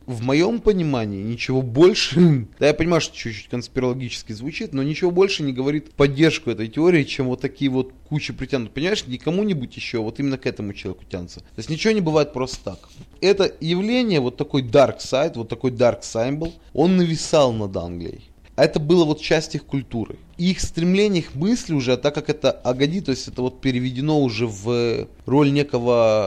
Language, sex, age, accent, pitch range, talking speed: Russian, male, 20-39, native, 115-155 Hz, 190 wpm